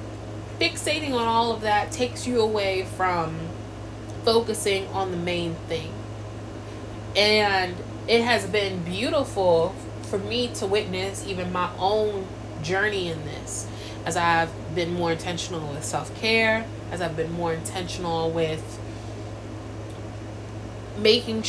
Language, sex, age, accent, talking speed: English, female, 20-39, American, 120 wpm